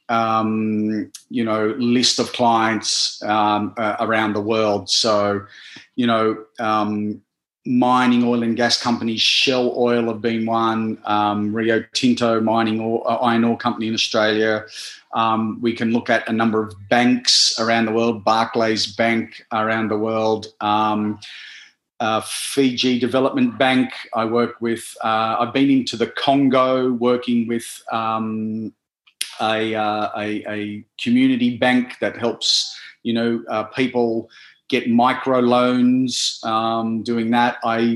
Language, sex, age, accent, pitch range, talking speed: English, male, 30-49, Australian, 110-125 Hz, 140 wpm